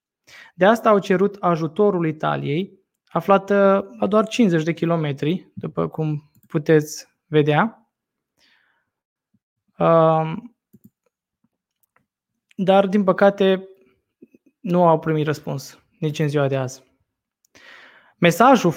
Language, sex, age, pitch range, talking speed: Romanian, male, 20-39, 155-195 Hz, 95 wpm